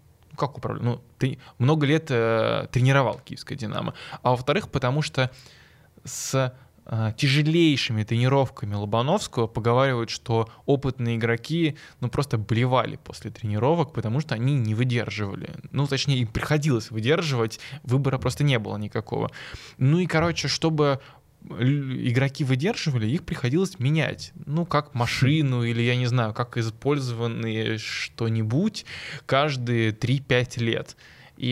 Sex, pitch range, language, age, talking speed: male, 115-145 Hz, Russian, 20-39, 125 wpm